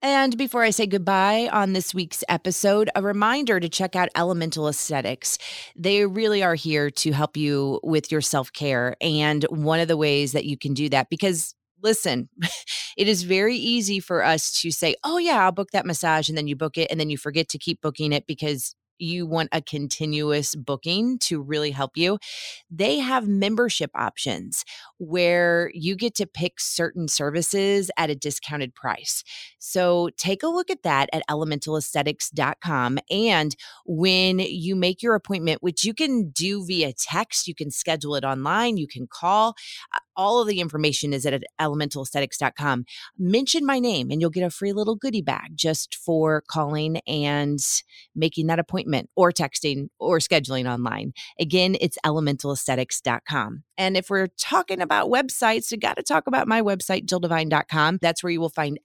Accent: American